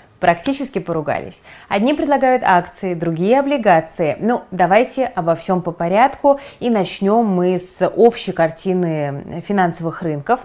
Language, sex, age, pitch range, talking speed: Russian, female, 20-39, 165-225 Hz, 120 wpm